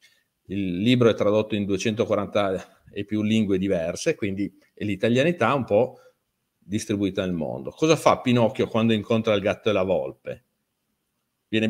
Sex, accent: male, native